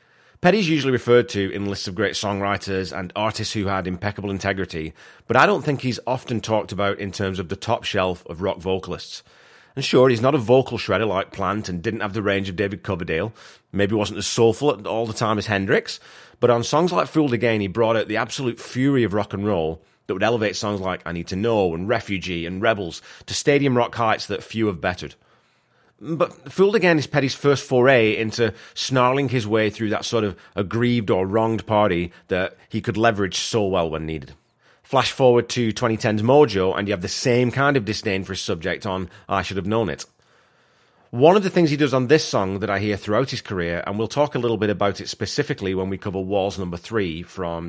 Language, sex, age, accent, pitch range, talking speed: English, male, 30-49, British, 95-125 Hz, 220 wpm